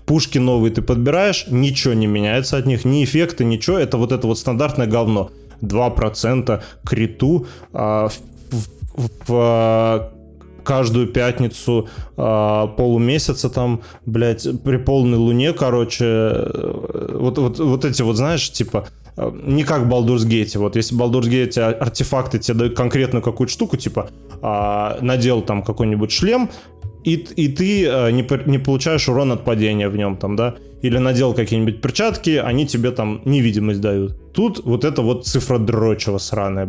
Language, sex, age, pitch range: Russian, male, 20-39, 110-130 Hz